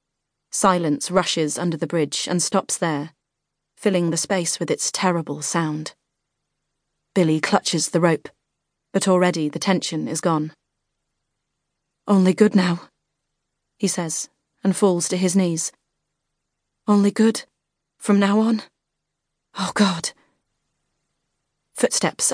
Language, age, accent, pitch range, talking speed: English, 30-49, British, 165-195 Hz, 115 wpm